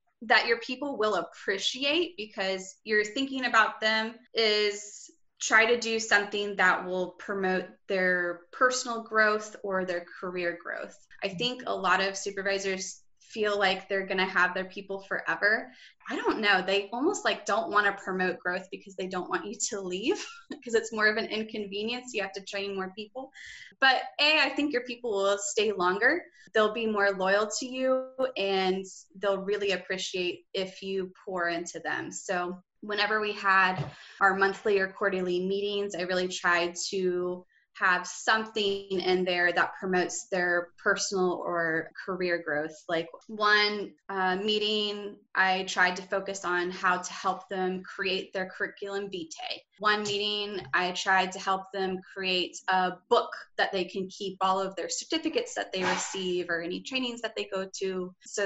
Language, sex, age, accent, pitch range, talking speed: English, female, 20-39, American, 185-215 Hz, 170 wpm